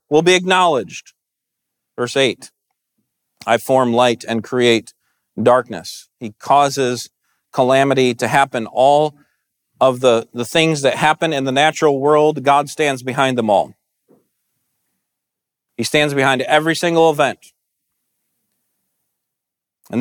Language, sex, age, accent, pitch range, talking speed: English, male, 40-59, American, 120-155 Hz, 115 wpm